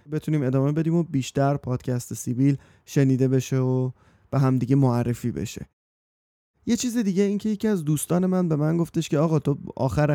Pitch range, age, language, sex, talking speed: 130-170 Hz, 30-49, Persian, male, 170 wpm